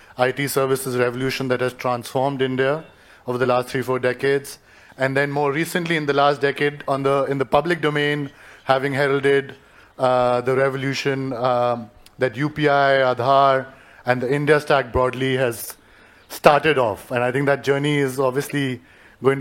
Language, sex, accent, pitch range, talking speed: English, male, Indian, 130-150 Hz, 160 wpm